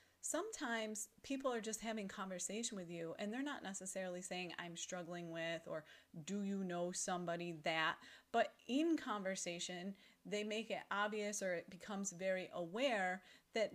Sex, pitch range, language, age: female, 180-235 Hz, English, 30-49